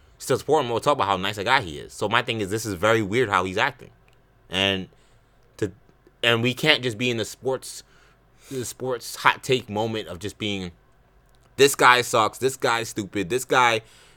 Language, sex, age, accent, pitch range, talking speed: English, male, 20-39, American, 110-140 Hz, 205 wpm